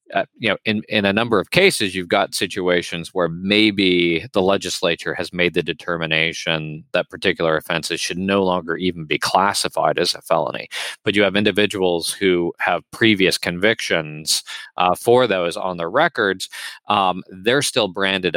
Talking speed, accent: 165 wpm, American